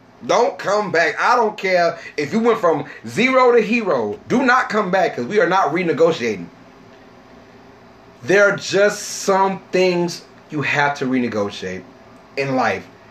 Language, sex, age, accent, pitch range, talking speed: English, male, 30-49, American, 145-210 Hz, 150 wpm